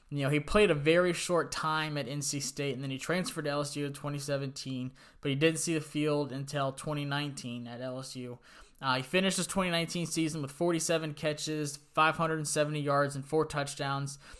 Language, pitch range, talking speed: English, 140-155 Hz, 180 wpm